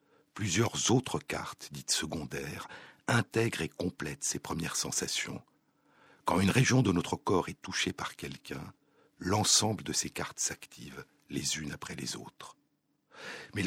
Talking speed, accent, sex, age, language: 140 wpm, French, male, 60-79, French